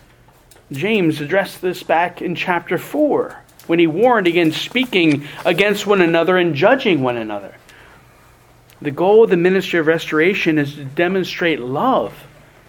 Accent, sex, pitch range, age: American, male, 145-180 Hz, 40-59